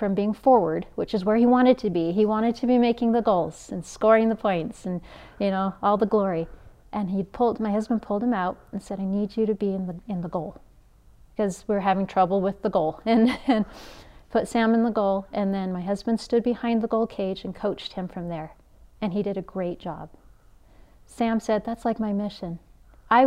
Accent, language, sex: American, English, female